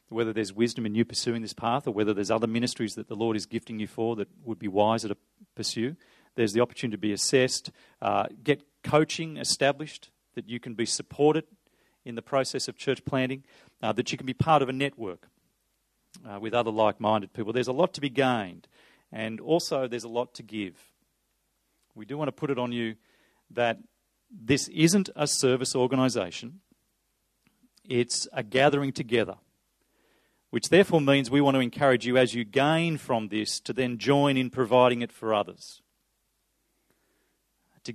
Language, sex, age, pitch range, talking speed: English, male, 40-59, 110-140 Hz, 180 wpm